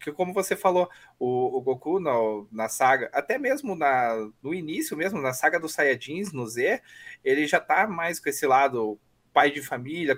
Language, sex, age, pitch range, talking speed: Portuguese, male, 20-39, 120-175 Hz, 190 wpm